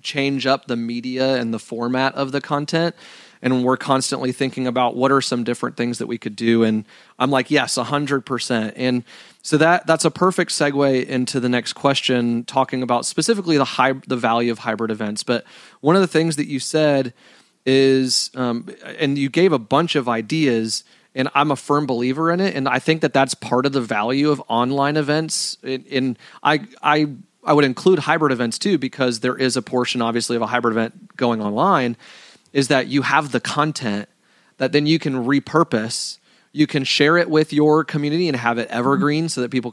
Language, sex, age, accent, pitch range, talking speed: English, male, 30-49, American, 120-145 Hz, 205 wpm